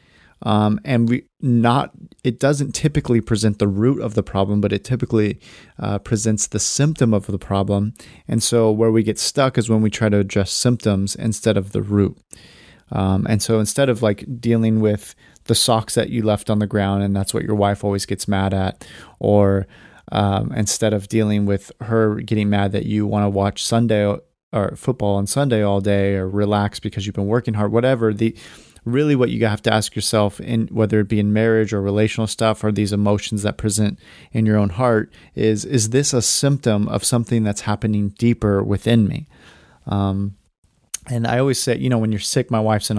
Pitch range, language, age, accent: 105-115 Hz, English, 30-49, American